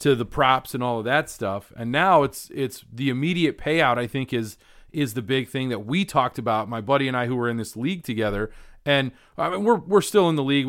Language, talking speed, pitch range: English, 240 wpm, 120-150 Hz